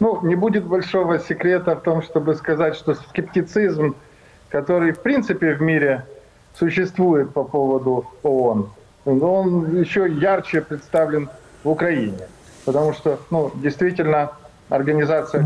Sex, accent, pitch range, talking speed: male, native, 140-165 Hz, 120 wpm